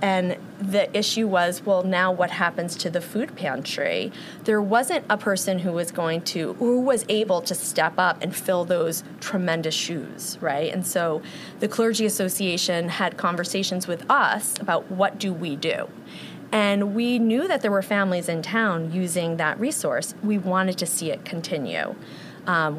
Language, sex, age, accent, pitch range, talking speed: English, female, 30-49, American, 175-235 Hz, 170 wpm